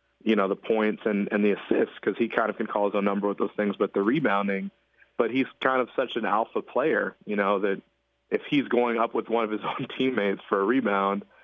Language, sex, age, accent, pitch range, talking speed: English, male, 30-49, American, 100-110 Hz, 245 wpm